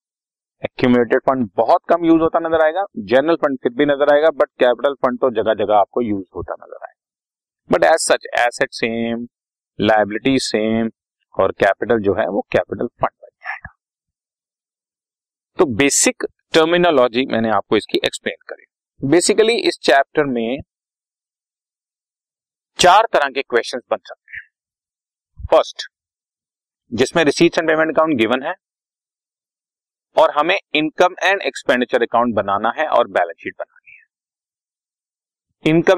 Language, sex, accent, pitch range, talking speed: Hindi, male, native, 125-180 Hz, 85 wpm